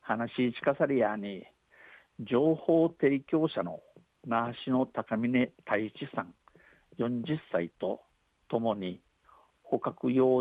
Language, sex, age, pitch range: Japanese, male, 50-69, 110-130 Hz